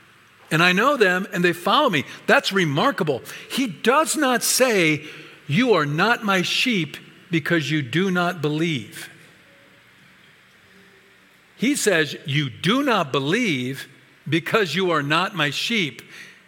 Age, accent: 50-69, American